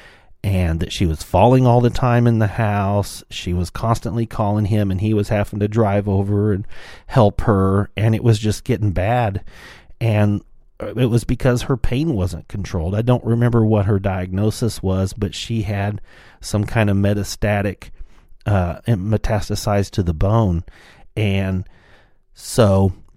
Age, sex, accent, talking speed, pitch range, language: 40-59, male, American, 160 wpm, 95-115 Hz, English